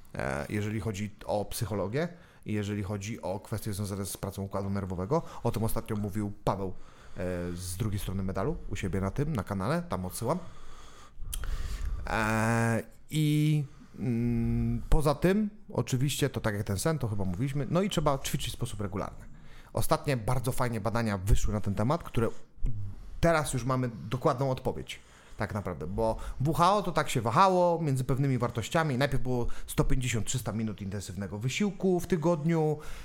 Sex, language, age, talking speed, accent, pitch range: male, Polish, 30-49, 150 wpm, native, 105-145 Hz